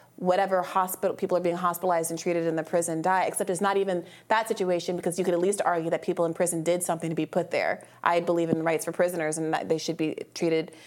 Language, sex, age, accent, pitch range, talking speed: English, female, 30-49, American, 165-190 Hz, 255 wpm